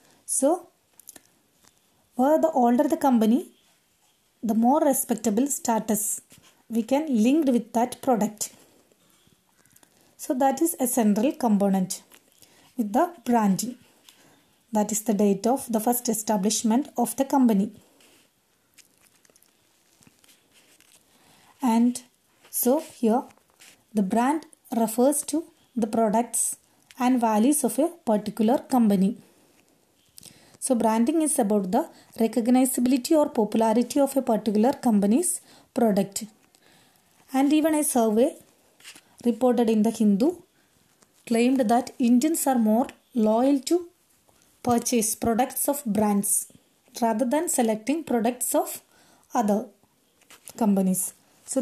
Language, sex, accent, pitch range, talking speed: English, female, Indian, 220-275 Hz, 105 wpm